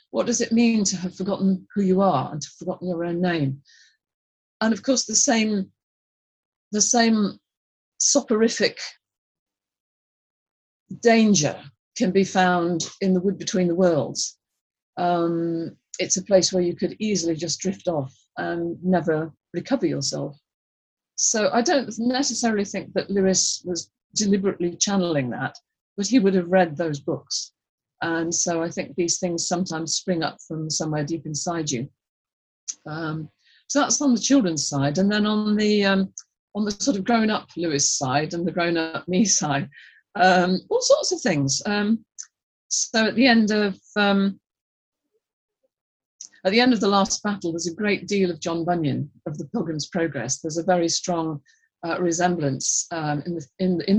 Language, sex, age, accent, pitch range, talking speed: English, female, 40-59, British, 165-210 Hz, 165 wpm